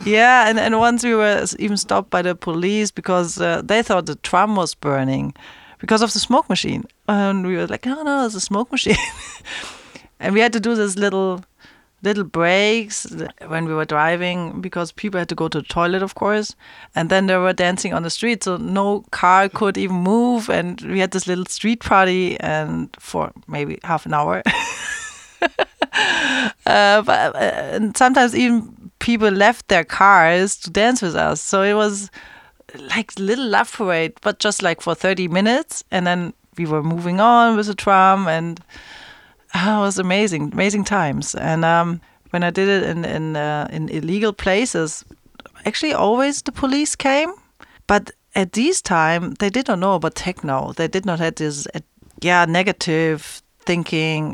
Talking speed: 180 wpm